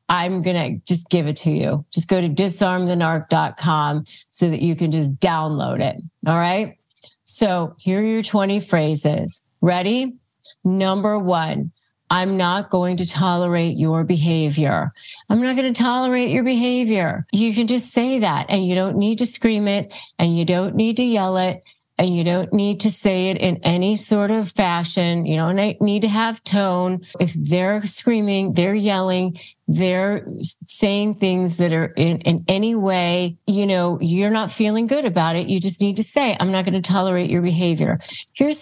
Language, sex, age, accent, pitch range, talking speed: English, female, 40-59, American, 170-215 Hz, 180 wpm